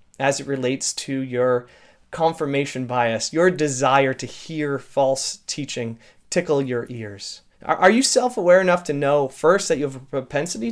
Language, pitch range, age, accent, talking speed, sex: English, 130-185 Hz, 30-49, American, 155 wpm, male